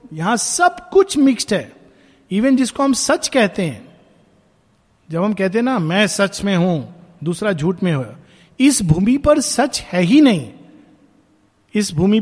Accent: native